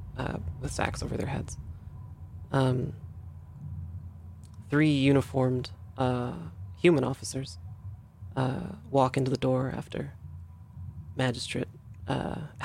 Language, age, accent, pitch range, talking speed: English, 30-49, American, 90-130 Hz, 95 wpm